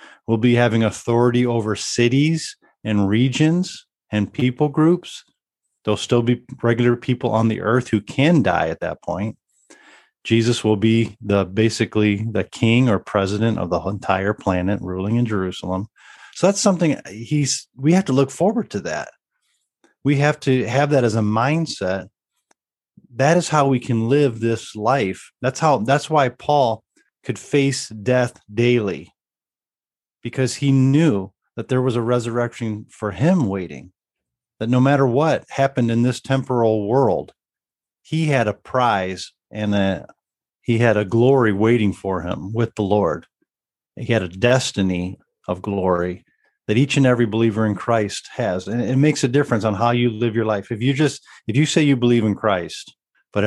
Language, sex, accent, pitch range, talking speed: English, male, American, 105-130 Hz, 165 wpm